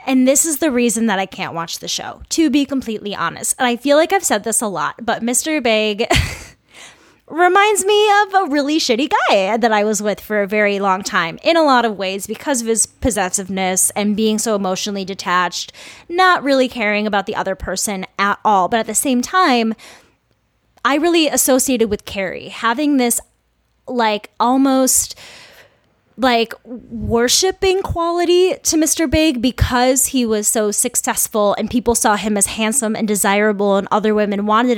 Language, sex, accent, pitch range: English, female, American, 210-265 Hz